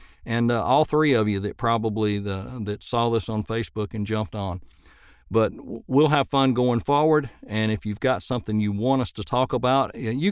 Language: English